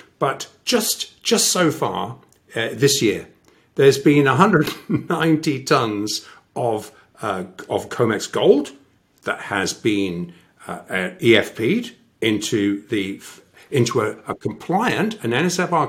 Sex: male